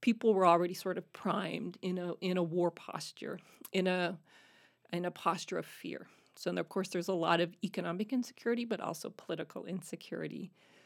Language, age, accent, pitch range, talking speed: English, 40-59, American, 175-225 Hz, 180 wpm